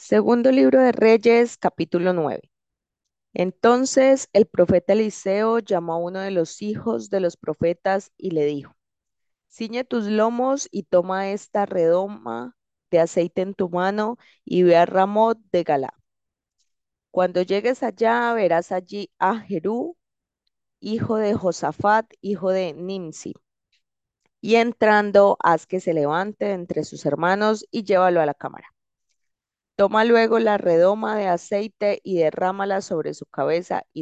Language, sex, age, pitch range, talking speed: Spanish, female, 20-39, 170-215 Hz, 140 wpm